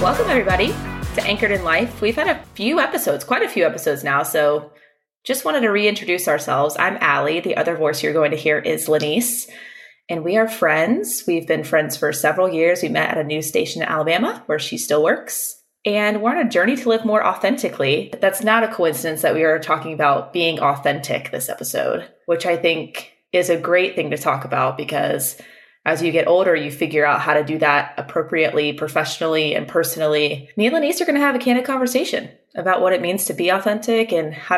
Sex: female